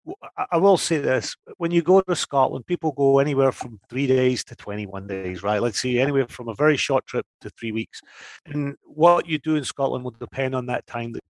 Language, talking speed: English, 225 wpm